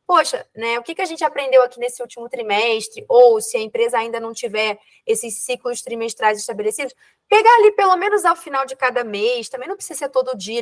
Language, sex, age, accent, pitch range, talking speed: Portuguese, female, 20-39, Brazilian, 235-345 Hz, 215 wpm